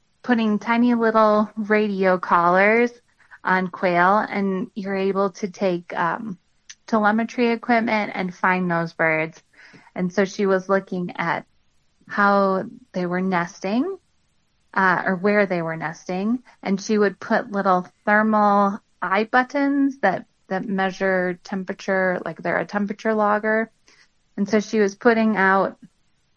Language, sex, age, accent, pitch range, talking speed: English, female, 20-39, American, 180-215 Hz, 130 wpm